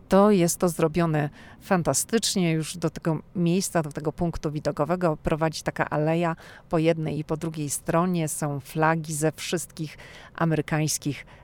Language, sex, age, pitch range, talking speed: Polish, female, 40-59, 145-175 Hz, 140 wpm